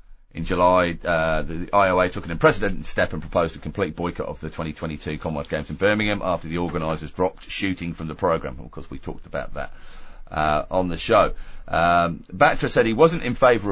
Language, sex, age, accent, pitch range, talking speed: English, male, 40-59, British, 90-115 Hz, 205 wpm